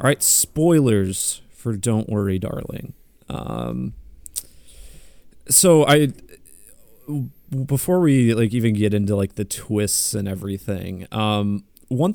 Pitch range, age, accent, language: 100-140 Hz, 30-49, American, English